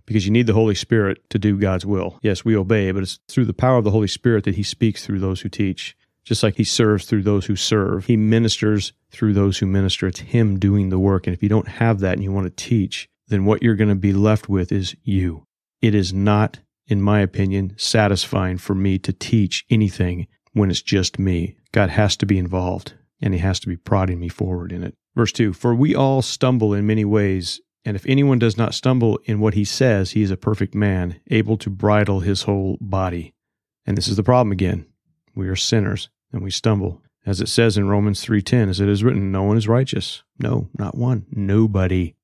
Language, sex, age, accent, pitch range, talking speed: English, male, 40-59, American, 95-110 Hz, 225 wpm